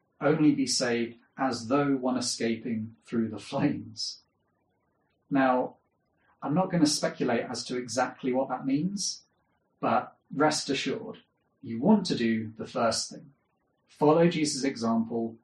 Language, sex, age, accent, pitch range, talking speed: English, male, 30-49, British, 115-150 Hz, 135 wpm